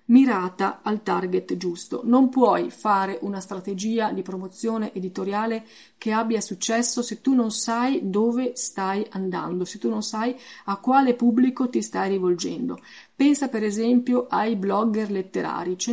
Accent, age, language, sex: native, 30-49, Italian, female